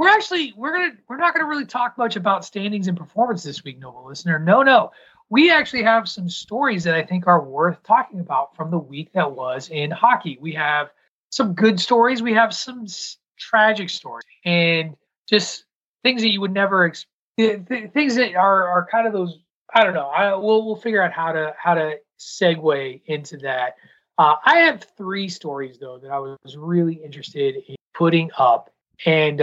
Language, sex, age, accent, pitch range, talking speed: English, male, 30-49, American, 145-195 Hz, 200 wpm